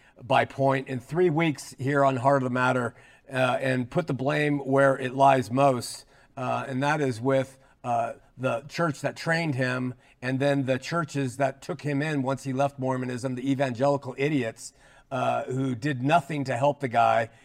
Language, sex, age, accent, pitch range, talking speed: English, male, 50-69, American, 135-165 Hz, 185 wpm